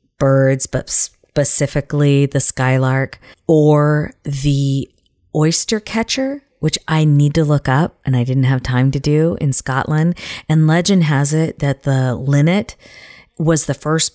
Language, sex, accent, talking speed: English, female, American, 145 wpm